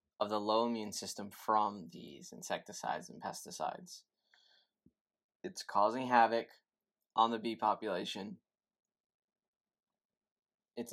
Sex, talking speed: male, 100 wpm